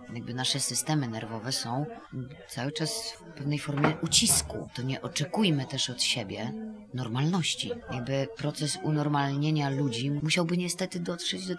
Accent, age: native, 20-39